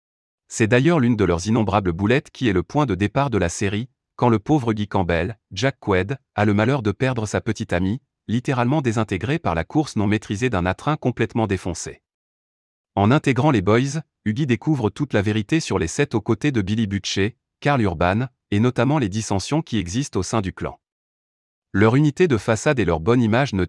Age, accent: 30-49, French